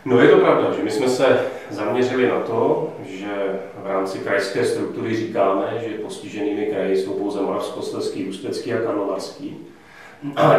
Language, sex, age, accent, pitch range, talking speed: Czech, male, 30-49, native, 100-130 Hz, 155 wpm